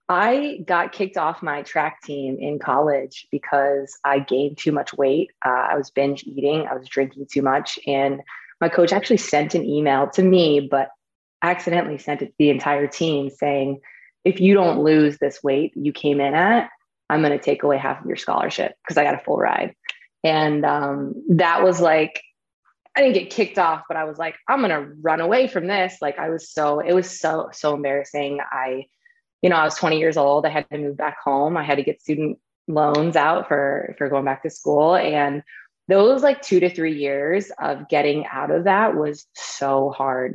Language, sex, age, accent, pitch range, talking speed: English, female, 20-39, American, 140-175 Hz, 205 wpm